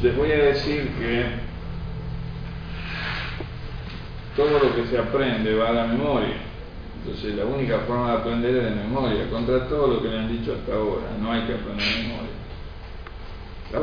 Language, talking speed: Spanish, 165 wpm